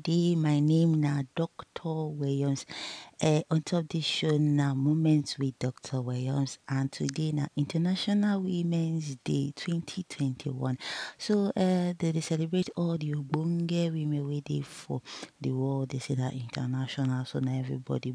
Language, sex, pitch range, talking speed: English, female, 140-180 Hz, 140 wpm